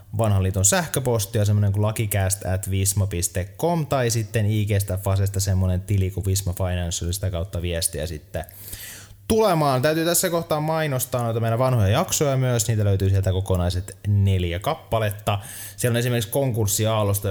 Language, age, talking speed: Finnish, 20-39, 130 wpm